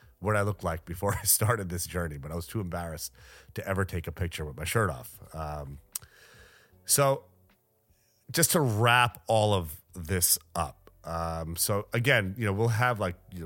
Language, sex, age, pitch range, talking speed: English, male, 30-49, 85-100 Hz, 185 wpm